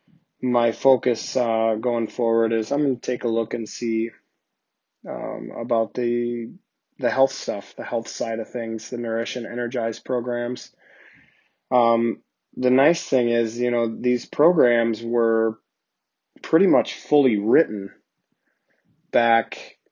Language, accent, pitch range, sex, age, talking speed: English, American, 110-125 Hz, male, 20-39, 135 wpm